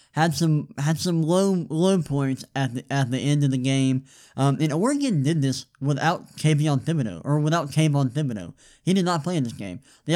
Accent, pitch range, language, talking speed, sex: American, 135-155 Hz, English, 205 wpm, male